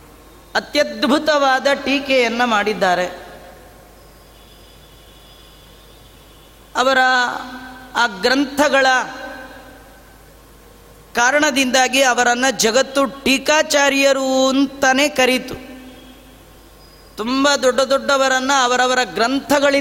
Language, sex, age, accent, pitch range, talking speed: Kannada, female, 30-49, native, 250-280 Hz, 35 wpm